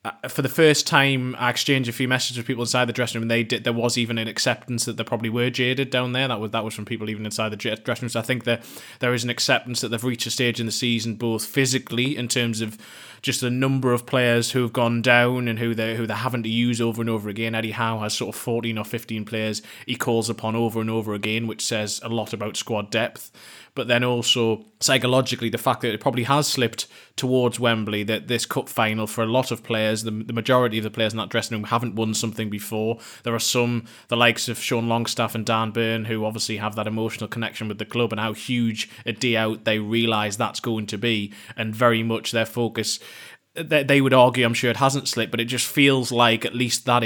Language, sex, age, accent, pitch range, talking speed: English, male, 20-39, British, 110-125 Hz, 250 wpm